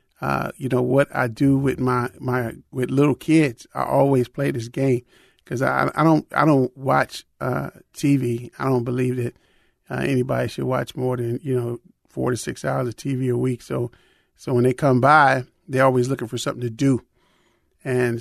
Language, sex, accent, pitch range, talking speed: English, male, American, 125-140 Hz, 200 wpm